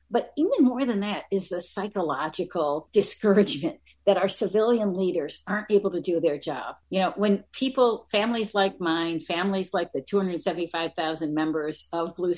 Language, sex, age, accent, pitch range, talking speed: English, female, 50-69, American, 175-230 Hz, 160 wpm